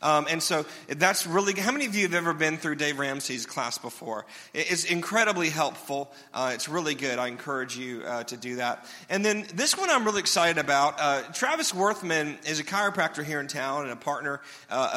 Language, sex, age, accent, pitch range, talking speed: English, male, 40-59, American, 145-195 Hz, 215 wpm